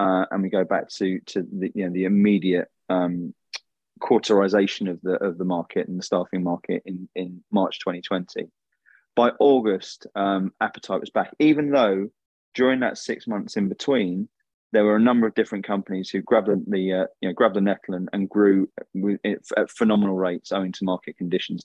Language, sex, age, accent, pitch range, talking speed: English, male, 20-39, British, 90-105 Hz, 190 wpm